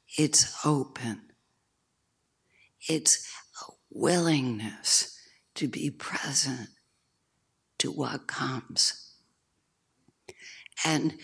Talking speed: 65 wpm